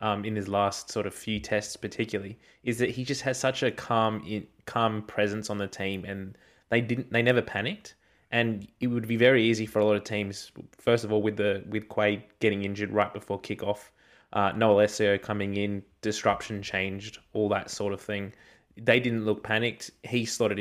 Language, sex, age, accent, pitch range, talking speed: English, male, 20-39, Australian, 105-115 Hz, 205 wpm